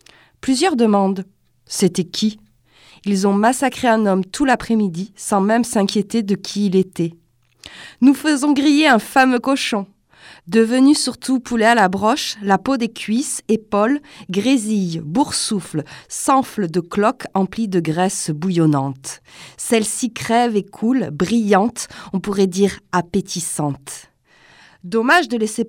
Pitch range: 180-245 Hz